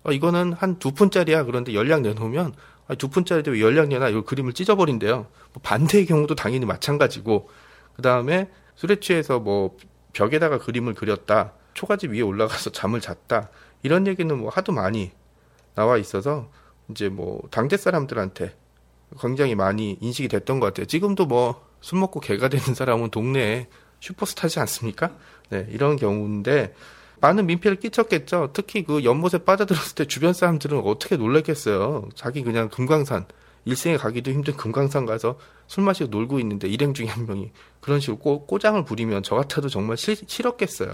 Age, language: 30-49, Korean